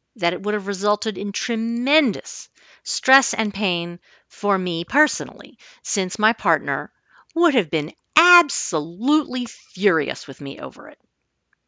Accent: American